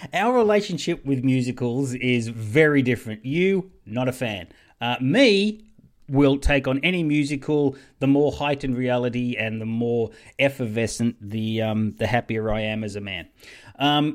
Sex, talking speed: male, 155 wpm